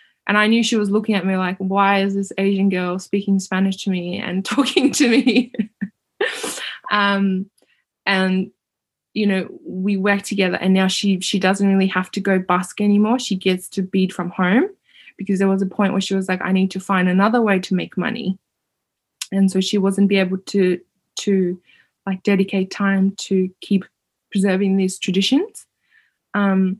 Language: English